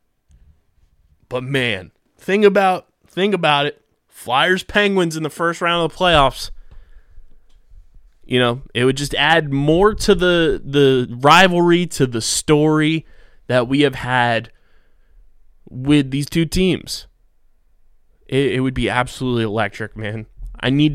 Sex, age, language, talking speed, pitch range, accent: male, 20-39, English, 135 wpm, 115-150 Hz, American